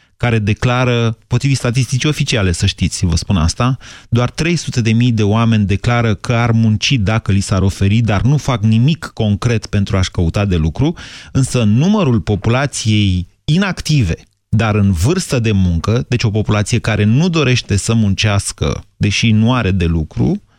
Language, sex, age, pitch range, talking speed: Romanian, male, 30-49, 100-125 Hz, 155 wpm